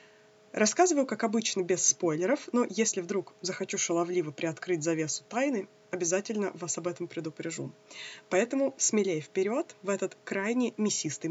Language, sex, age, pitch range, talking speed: Russian, female, 20-39, 175-230 Hz, 135 wpm